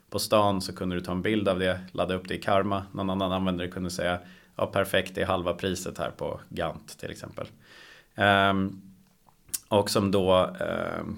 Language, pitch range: Swedish, 95-110 Hz